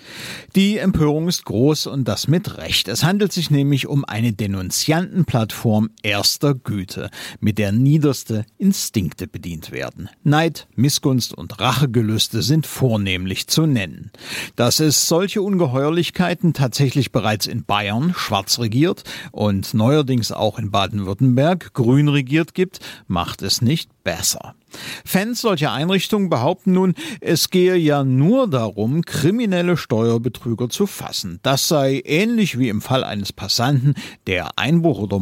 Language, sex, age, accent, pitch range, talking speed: German, male, 50-69, German, 110-160 Hz, 135 wpm